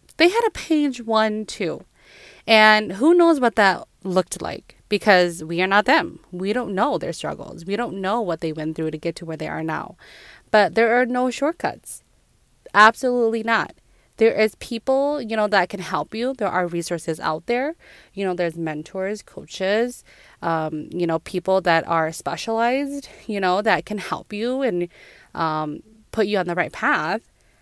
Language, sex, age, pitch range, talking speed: English, female, 20-39, 175-225 Hz, 180 wpm